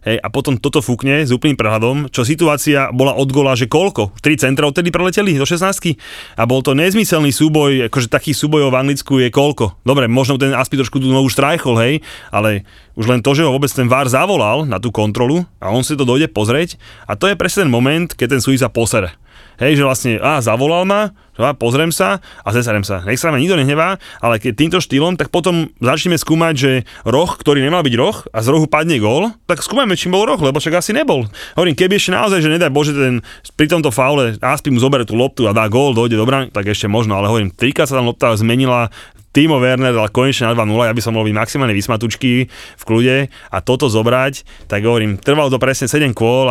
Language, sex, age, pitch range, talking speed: Slovak, male, 30-49, 115-145 Hz, 220 wpm